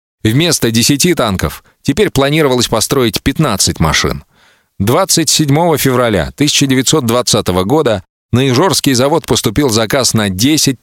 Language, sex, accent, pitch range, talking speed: Russian, male, native, 100-140 Hz, 105 wpm